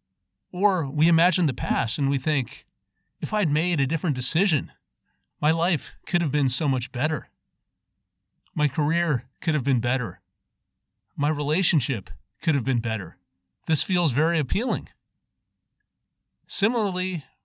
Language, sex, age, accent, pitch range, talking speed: English, male, 40-59, American, 125-165 Hz, 135 wpm